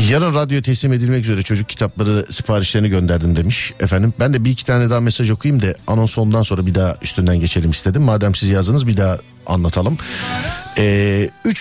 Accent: native